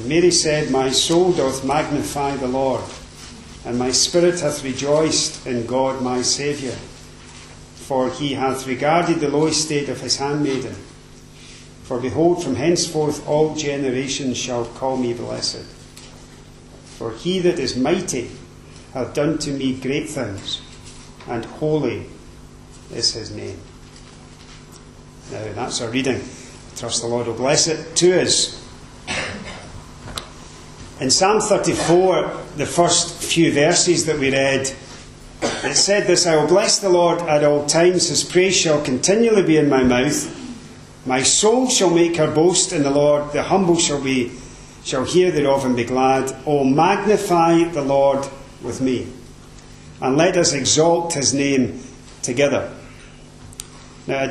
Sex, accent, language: male, British, English